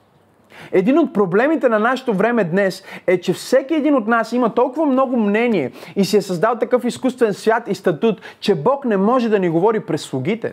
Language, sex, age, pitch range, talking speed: Bulgarian, male, 30-49, 180-245 Hz, 200 wpm